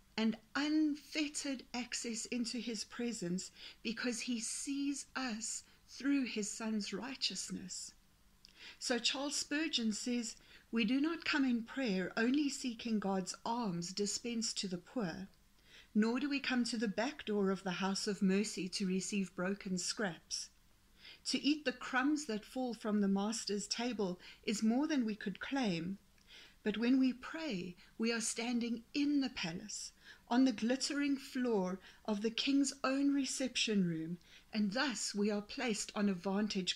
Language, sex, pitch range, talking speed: English, female, 200-260 Hz, 150 wpm